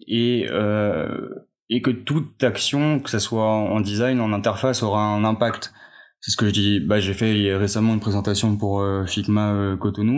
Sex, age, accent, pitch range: male, 20-39, French, 105-125 Hz